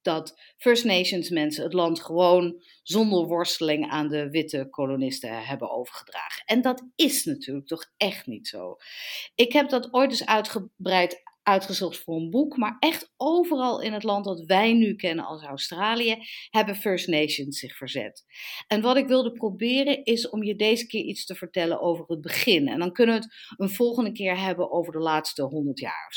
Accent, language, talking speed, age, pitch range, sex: Dutch, Dutch, 185 wpm, 50-69, 170-240 Hz, female